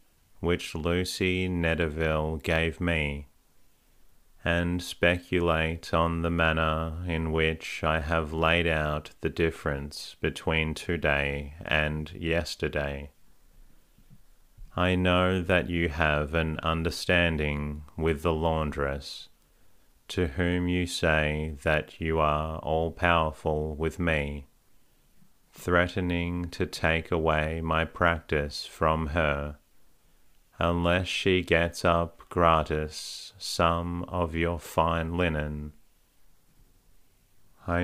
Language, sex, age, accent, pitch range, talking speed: English, male, 30-49, Australian, 80-90 Hz, 95 wpm